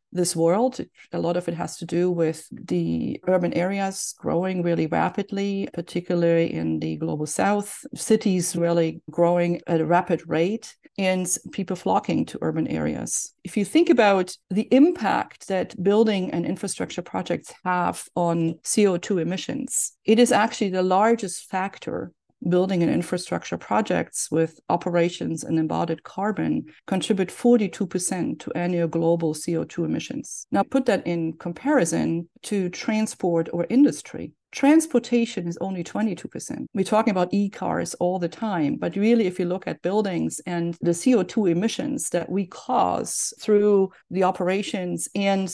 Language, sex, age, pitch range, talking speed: English, female, 40-59, 170-205 Hz, 145 wpm